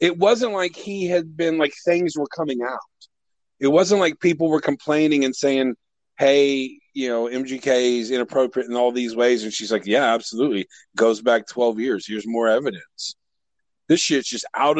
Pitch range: 120-165 Hz